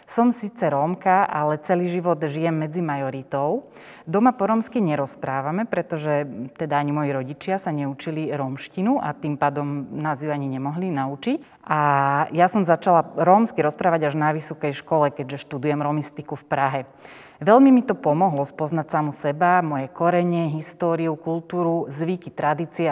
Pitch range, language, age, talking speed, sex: 145-175 Hz, Slovak, 30-49, 150 wpm, female